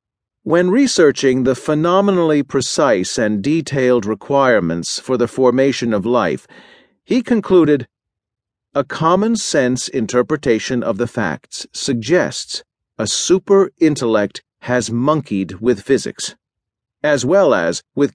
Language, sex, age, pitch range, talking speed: English, male, 40-59, 115-150 Hz, 105 wpm